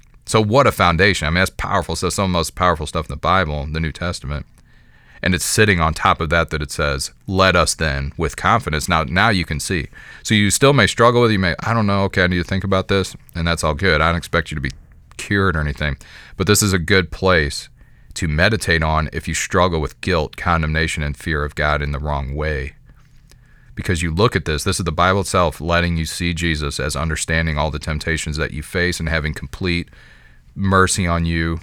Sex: male